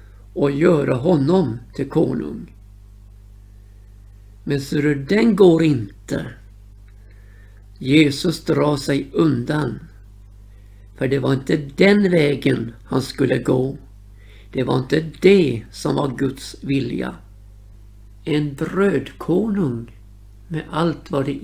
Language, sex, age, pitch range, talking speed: Swedish, male, 60-79, 100-155 Hz, 100 wpm